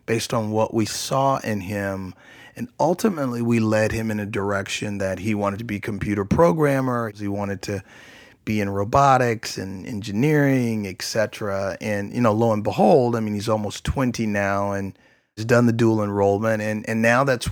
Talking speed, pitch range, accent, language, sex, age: 180 wpm, 100-120 Hz, American, English, male, 30-49